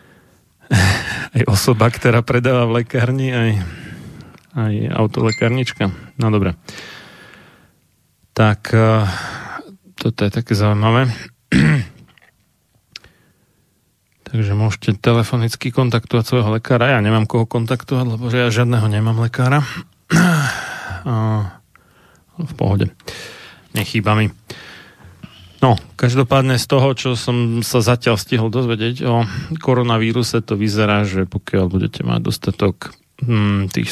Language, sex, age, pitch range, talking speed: Slovak, male, 40-59, 105-125 Hz, 100 wpm